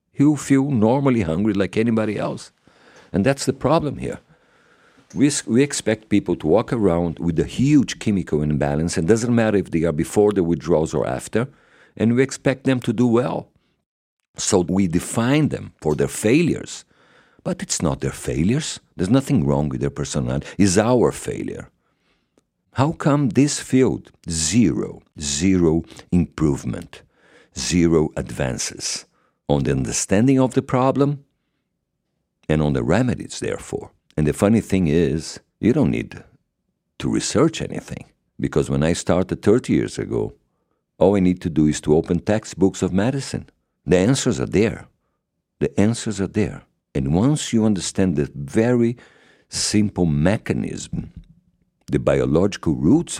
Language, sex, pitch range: English, male, 80-130 Hz